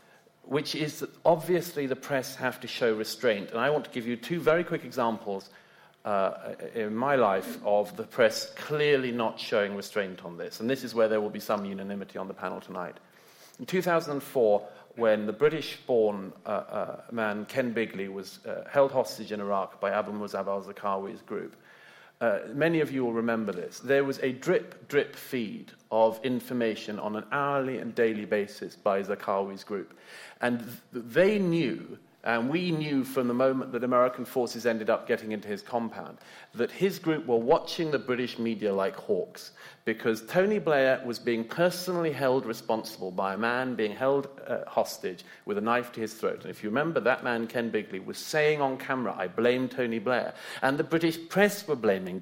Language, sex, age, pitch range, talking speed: English, male, 40-59, 110-150 Hz, 185 wpm